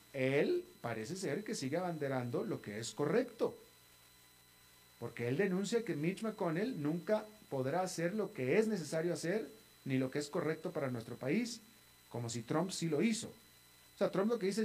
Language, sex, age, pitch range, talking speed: Spanish, male, 40-59, 110-175 Hz, 180 wpm